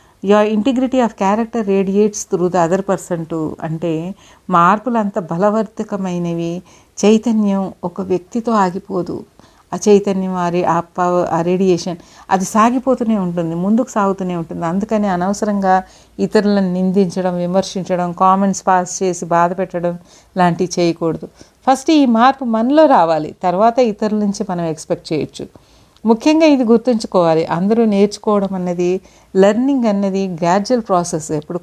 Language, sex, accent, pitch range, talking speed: Telugu, female, native, 175-220 Hz, 125 wpm